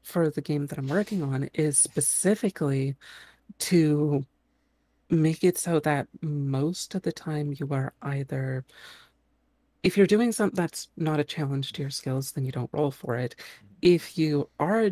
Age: 40-59